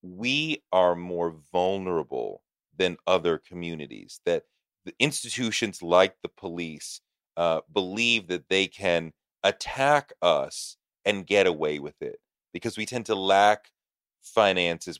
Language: English